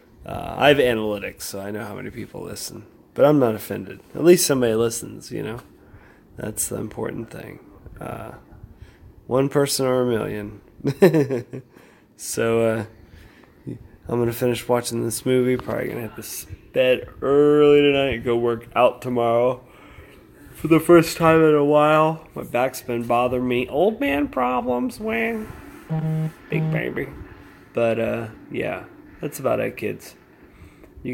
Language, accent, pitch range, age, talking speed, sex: English, American, 115-140 Hz, 20-39, 150 wpm, male